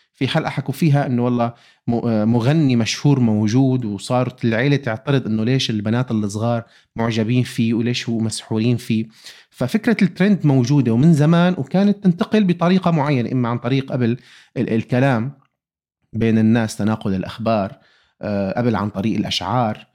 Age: 30-49